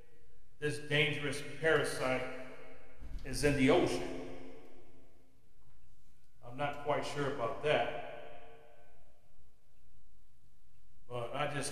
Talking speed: 80 wpm